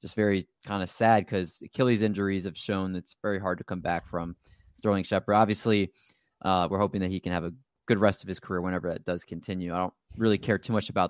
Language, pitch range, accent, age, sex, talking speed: English, 95-115 Hz, American, 20-39, male, 240 wpm